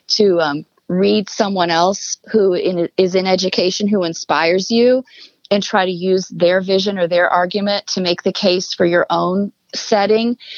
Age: 30-49